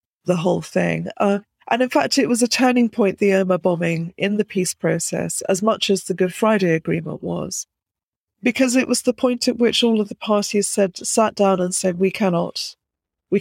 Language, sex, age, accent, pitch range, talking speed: English, female, 40-59, British, 175-215 Hz, 205 wpm